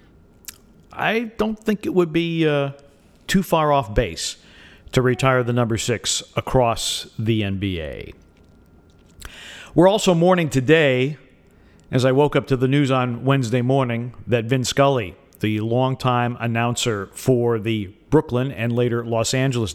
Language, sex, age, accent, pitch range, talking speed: English, male, 50-69, American, 110-140 Hz, 140 wpm